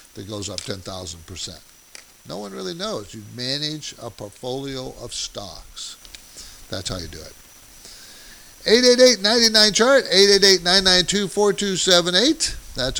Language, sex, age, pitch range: English, male, 50-69, 125-180 Hz